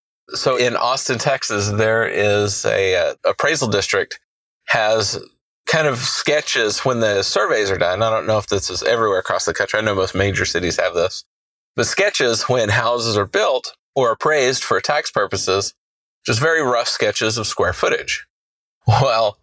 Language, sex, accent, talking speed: English, male, American, 170 wpm